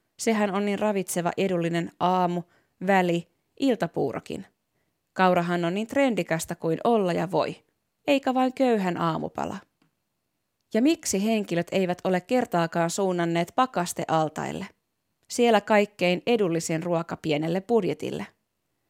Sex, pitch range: female, 170-220 Hz